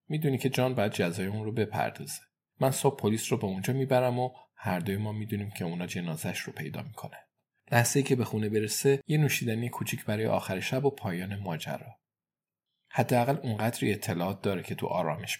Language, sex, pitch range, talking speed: Persian, male, 95-120 Hz, 190 wpm